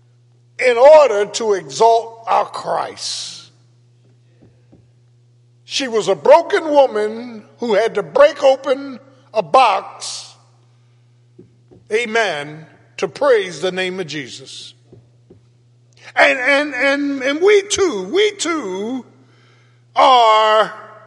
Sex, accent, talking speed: male, American, 95 wpm